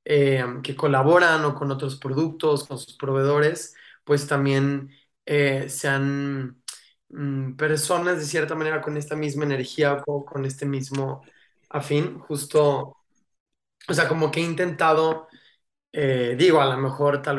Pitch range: 135-150 Hz